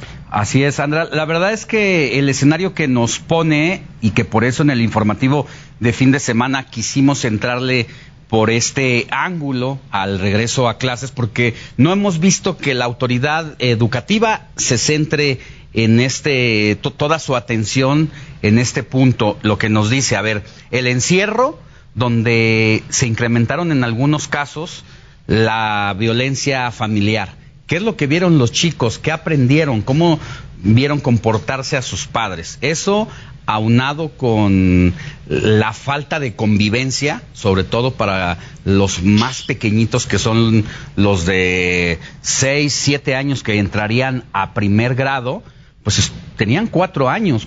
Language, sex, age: Spanish, male, 40-59